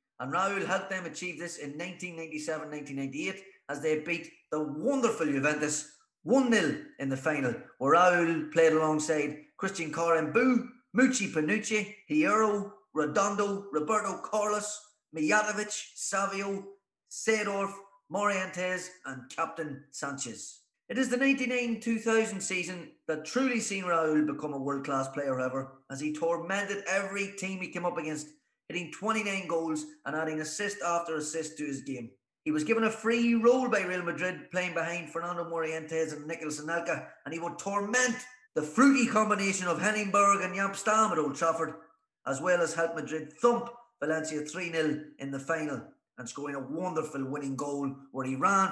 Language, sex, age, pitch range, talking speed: English, male, 30-49, 150-205 Hz, 150 wpm